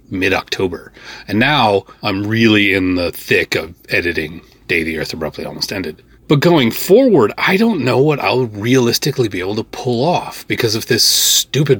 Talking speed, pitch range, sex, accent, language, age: 175 wpm, 95-135 Hz, male, American, English, 30-49